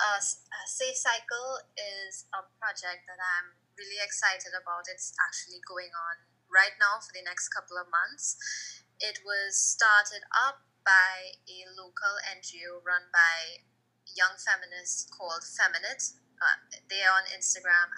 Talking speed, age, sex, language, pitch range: 135 wpm, 20-39, female, English, 180-210 Hz